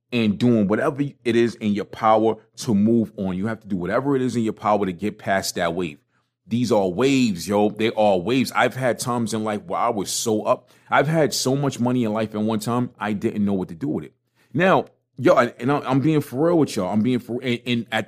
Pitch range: 105-130 Hz